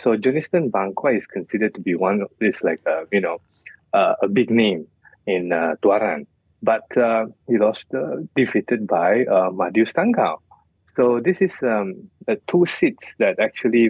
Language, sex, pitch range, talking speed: English, male, 105-125 Hz, 175 wpm